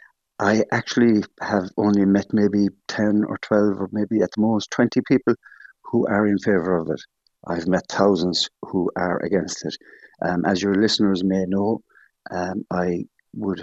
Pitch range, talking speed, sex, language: 90-105 Hz, 165 wpm, male, English